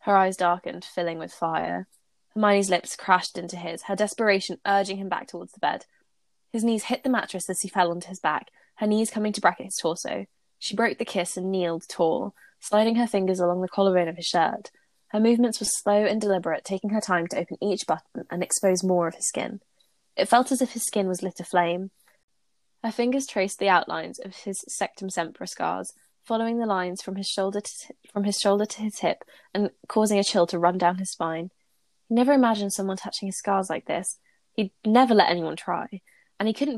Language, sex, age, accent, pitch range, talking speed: English, female, 10-29, British, 180-215 Hz, 205 wpm